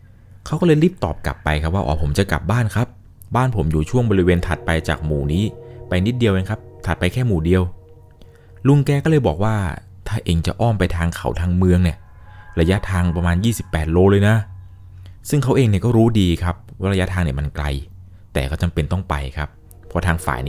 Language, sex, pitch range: Thai, male, 80-100 Hz